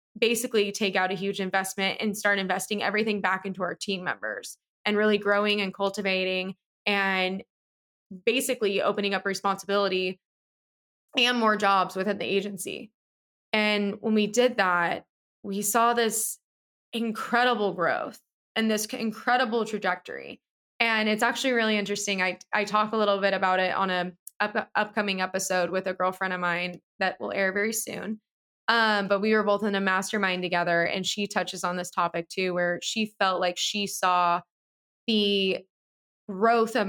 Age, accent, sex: 20-39, American, female